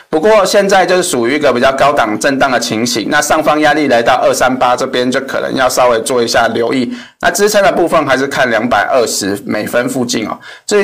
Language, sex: Chinese, male